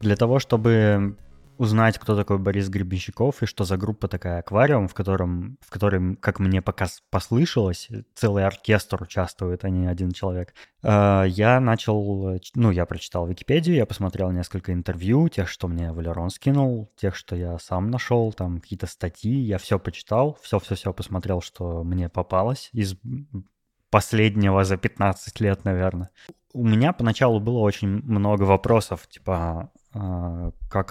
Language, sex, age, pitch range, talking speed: Russian, male, 20-39, 95-115 Hz, 145 wpm